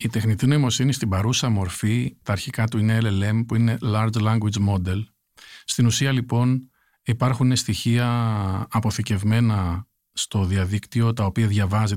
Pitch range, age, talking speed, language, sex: 110-125 Hz, 50-69, 135 wpm, Greek, male